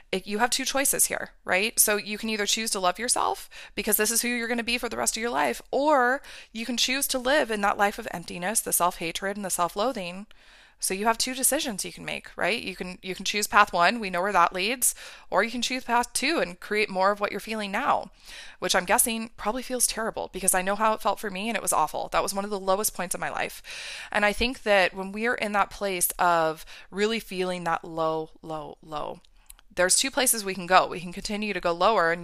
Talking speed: 255 wpm